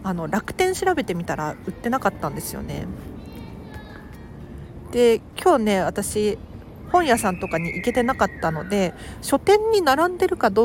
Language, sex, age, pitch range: Japanese, female, 40-59, 175-245 Hz